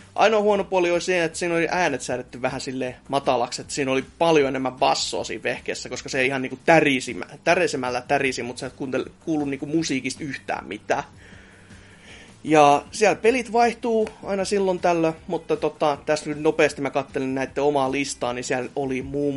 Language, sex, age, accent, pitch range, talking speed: Finnish, male, 30-49, native, 125-150 Hz, 175 wpm